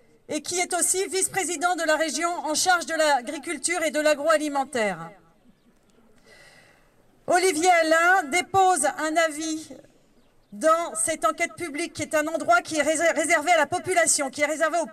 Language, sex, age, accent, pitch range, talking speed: French, female, 40-59, French, 295-350 Hz, 155 wpm